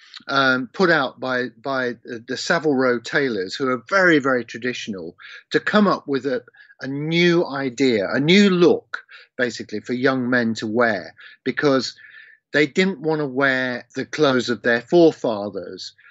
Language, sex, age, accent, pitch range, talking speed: English, male, 50-69, British, 125-165 Hz, 155 wpm